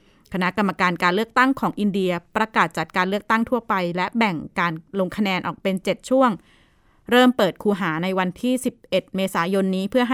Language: Thai